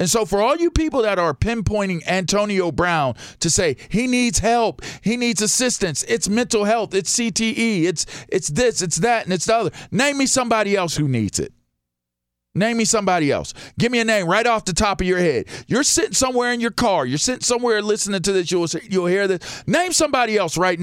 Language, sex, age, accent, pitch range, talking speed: English, male, 40-59, American, 145-215 Hz, 220 wpm